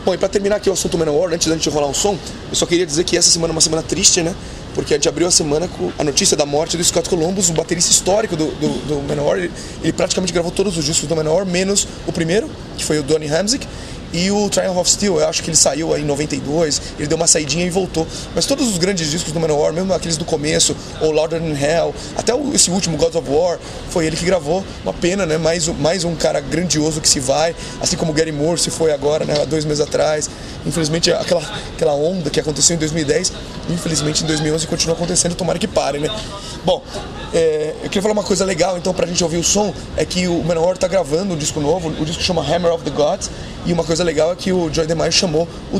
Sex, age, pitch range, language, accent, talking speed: male, 20-39, 155-180 Hz, Portuguese, Brazilian, 250 wpm